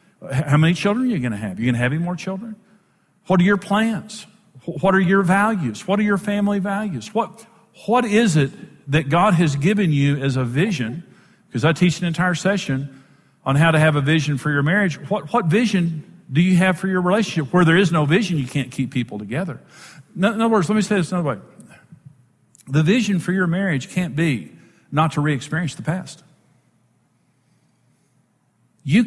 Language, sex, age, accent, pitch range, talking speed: English, male, 50-69, American, 150-200 Hz, 200 wpm